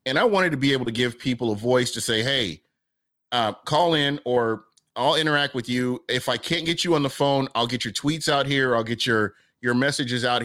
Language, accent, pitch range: English, American, 120-145 Hz